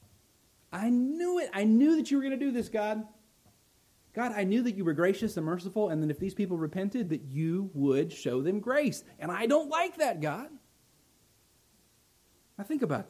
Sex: male